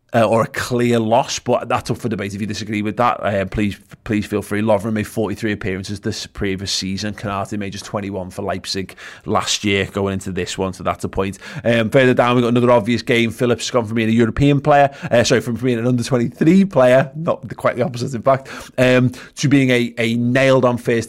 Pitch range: 100-125 Hz